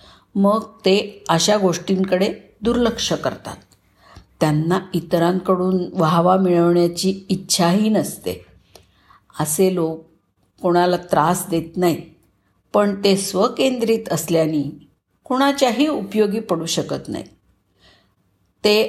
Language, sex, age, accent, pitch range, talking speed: Marathi, female, 50-69, native, 160-220 Hz, 90 wpm